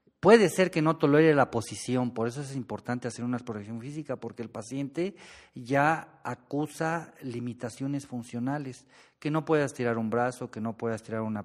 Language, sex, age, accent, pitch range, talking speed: Spanish, male, 40-59, Mexican, 120-150 Hz, 175 wpm